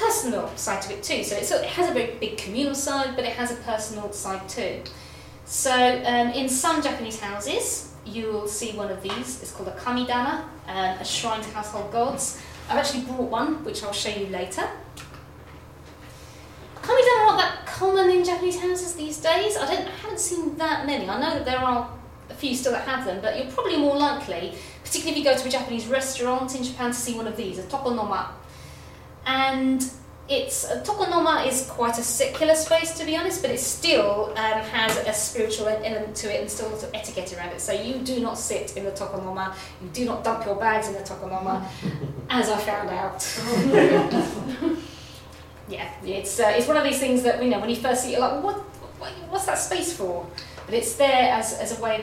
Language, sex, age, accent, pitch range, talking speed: English, female, 20-39, British, 205-285 Hz, 210 wpm